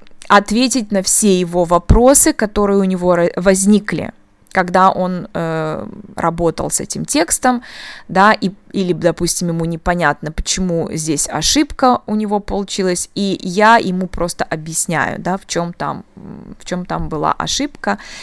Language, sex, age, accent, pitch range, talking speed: Russian, female, 20-39, native, 175-205 Hz, 130 wpm